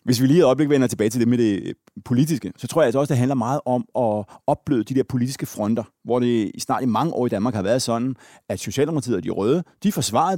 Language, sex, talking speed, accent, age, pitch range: Danish, male, 265 wpm, native, 30-49, 115-150 Hz